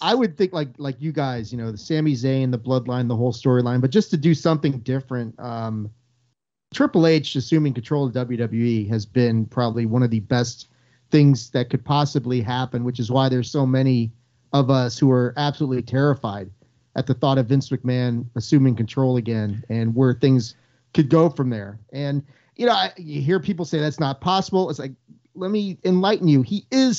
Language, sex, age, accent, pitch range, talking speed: English, male, 40-59, American, 125-160 Hz, 200 wpm